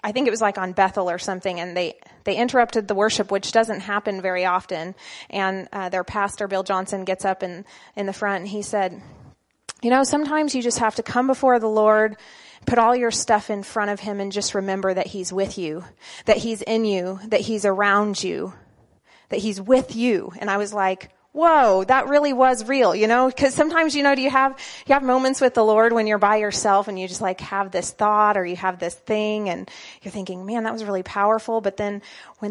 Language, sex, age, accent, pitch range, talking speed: English, female, 30-49, American, 195-235 Hz, 230 wpm